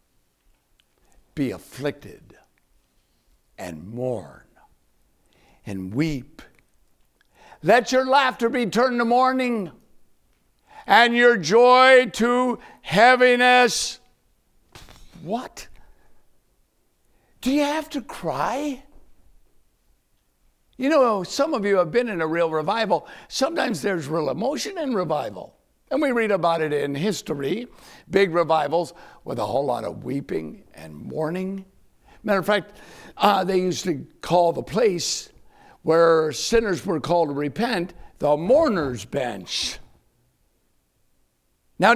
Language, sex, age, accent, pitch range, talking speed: English, male, 60-79, American, 155-245 Hz, 110 wpm